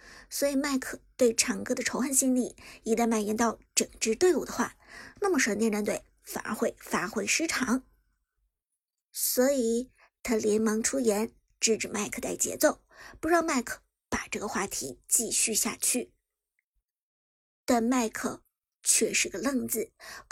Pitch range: 230-330 Hz